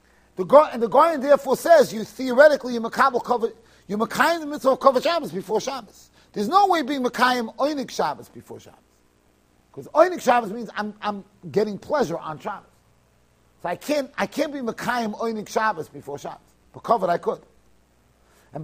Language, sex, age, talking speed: English, male, 40-59, 165 wpm